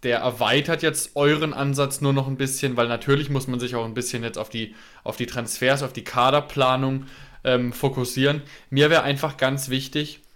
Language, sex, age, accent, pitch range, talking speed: German, male, 20-39, German, 125-150 Hz, 185 wpm